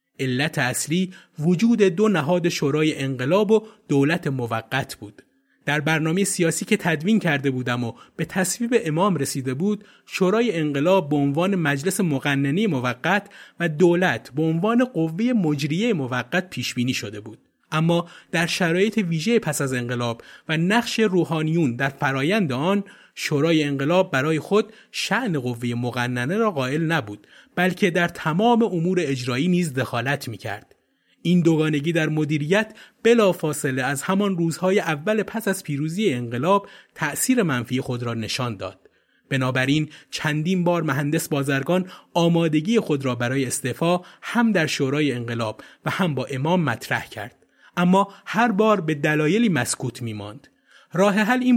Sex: male